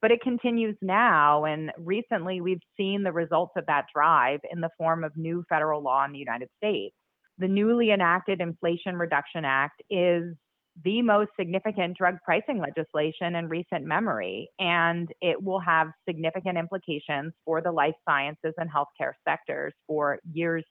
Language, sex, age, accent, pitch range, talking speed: English, female, 30-49, American, 160-200 Hz, 160 wpm